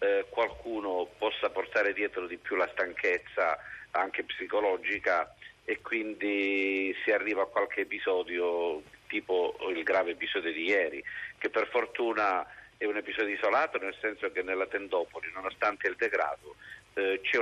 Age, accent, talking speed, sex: 50-69, native, 140 wpm, male